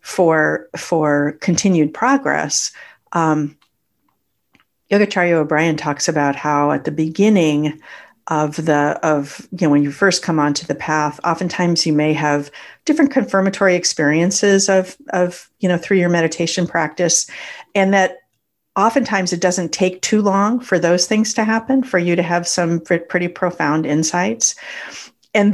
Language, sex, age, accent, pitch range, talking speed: English, female, 50-69, American, 155-190 Hz, 145 wpm